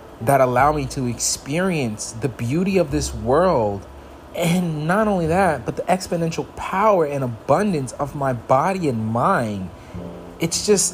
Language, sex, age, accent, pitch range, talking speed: English, male, 30-49, American, 100-145 Hz, 150 wpm